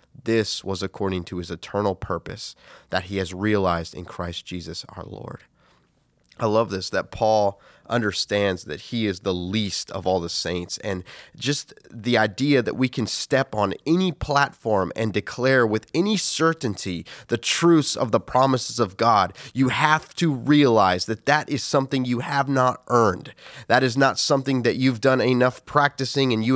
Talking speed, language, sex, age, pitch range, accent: 175 wpm, English, male, 20-39, 105-135 Hz, American